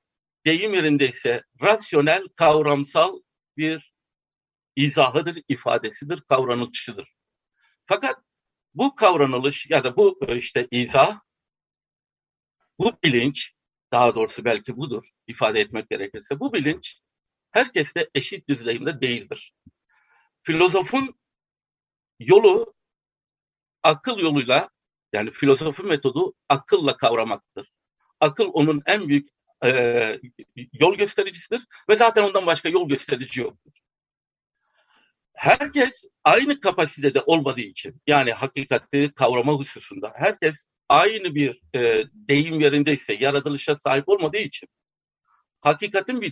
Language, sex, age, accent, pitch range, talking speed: Turkish, male, 60-79, native, 140-215 Hz, 100 wpm